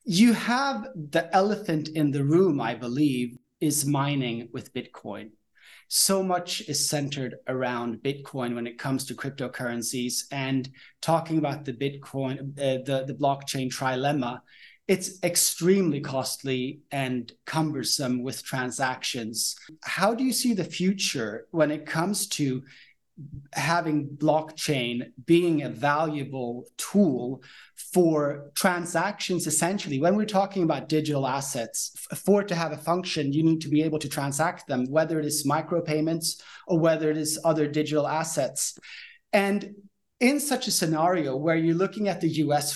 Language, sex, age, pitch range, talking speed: English, male, 30-49, 135-175 Hz, 145 wpm